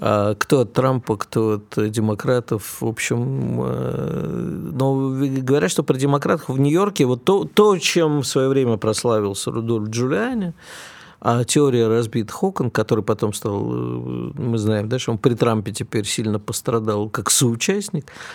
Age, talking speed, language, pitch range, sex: 50-69, 145 wpm, Russian, 110-150 Hz, male